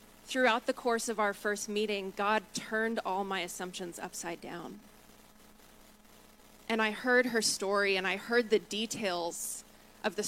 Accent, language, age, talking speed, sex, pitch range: American, English, 20-39, 150 wpm, female, 200-235 Hz